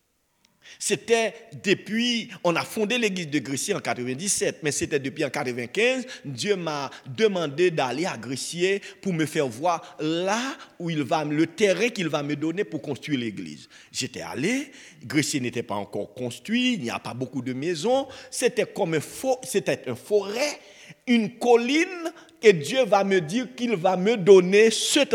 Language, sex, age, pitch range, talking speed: French, male, 50-69, 145-235 Hz, 170 wpm